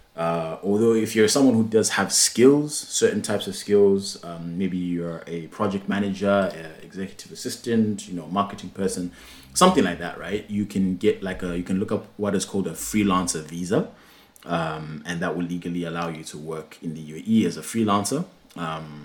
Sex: male